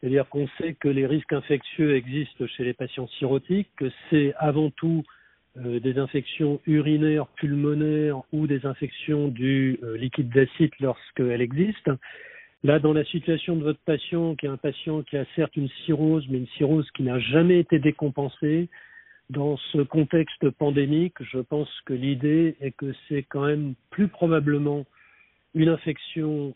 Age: 50-69